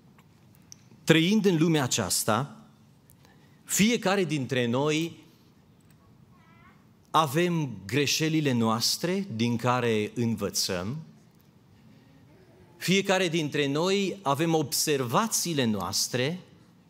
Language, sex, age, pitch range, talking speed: Romanian, male, 40-59, 120-165 Hz, 65 wpm